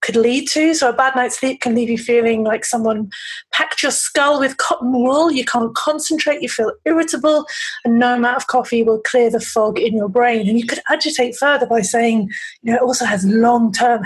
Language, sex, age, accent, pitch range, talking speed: English, female, 30-49, British, 225-275 Hz, 220 wpm